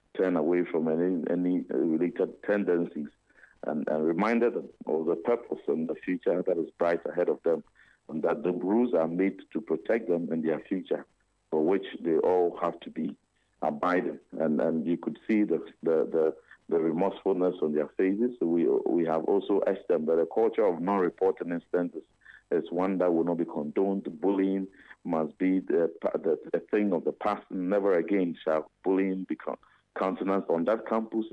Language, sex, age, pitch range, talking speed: English, male, 50-69, 85-100 Hz, 180 wpm